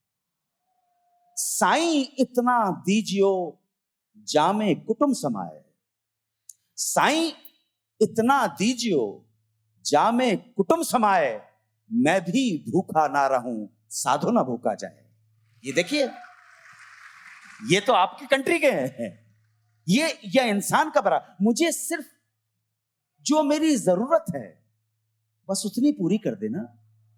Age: 40-59